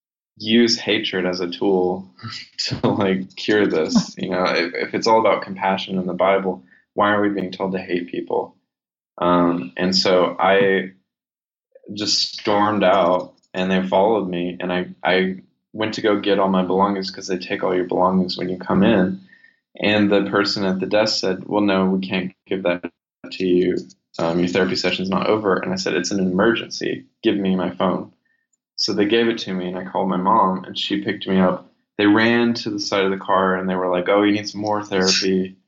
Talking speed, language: 205 wpm, English